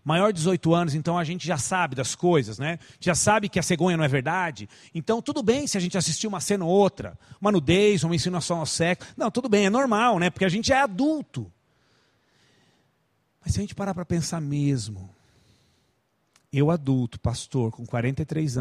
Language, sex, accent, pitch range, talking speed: Portuguese, male, Brazilian, 130-200 Hz, 195 wpm